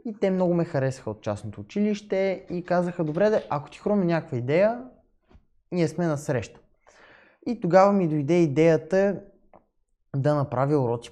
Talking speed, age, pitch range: 150 wpm, 20-39, 135-190 Hz